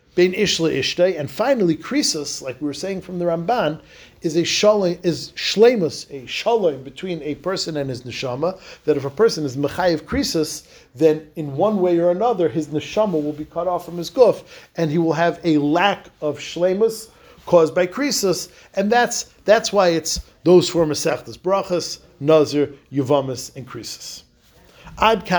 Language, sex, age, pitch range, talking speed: English, male, 50-69, 150-195 Hz, 165 wpm